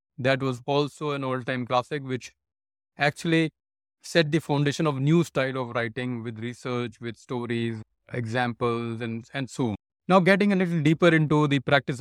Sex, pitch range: male, 120-145 Hz